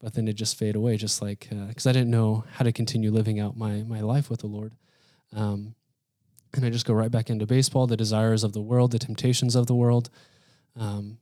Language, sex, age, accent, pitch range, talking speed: English, male, 20-39, American, 110-130 Hz, 235 wpm